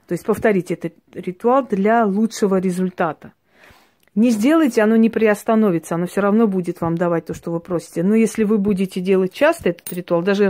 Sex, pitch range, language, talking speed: female, 175-210 Hz, Russian, 185 wpm